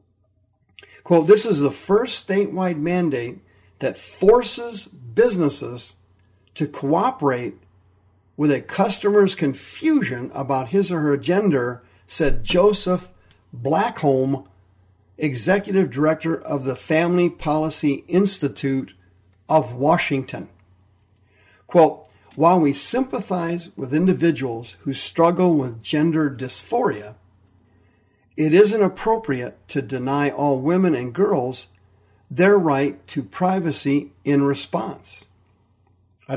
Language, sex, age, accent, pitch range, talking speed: English, male, 50-69, American, 100-160 Hz, 100 wpm